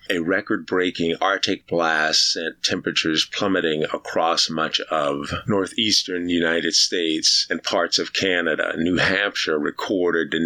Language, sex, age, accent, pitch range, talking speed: English, male, 50-69, American, 80-90 Hz, 120 wpm